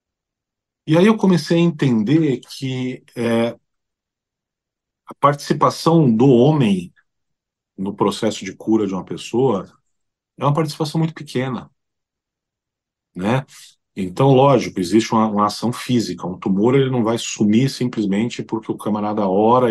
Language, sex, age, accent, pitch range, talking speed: Portuguese, male, 40-59, Brazilian, 110-150 Hz, 130 wpm